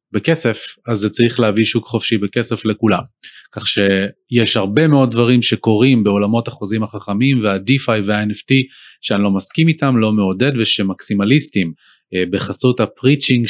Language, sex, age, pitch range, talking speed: Hebrew, male, 30-49, 105-135 Hz, 135 wpm